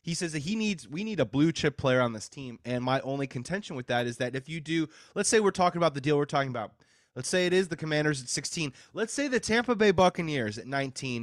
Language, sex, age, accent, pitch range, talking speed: English, male, 20-39, American, 125-175 Hz, 275 wpm